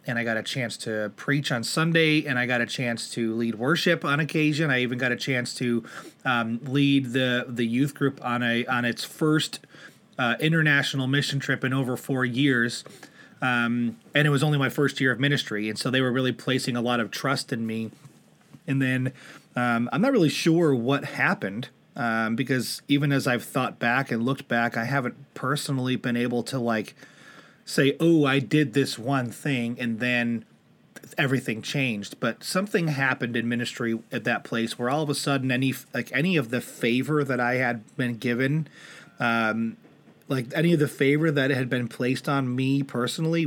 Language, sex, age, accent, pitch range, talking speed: English, male, 30-49, American, 120-140 Hz, 195 wpm